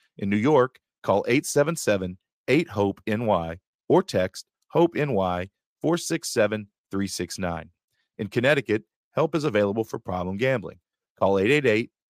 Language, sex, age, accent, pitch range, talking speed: English, male, 40-59, American, 95-125 Hz, 105 wpm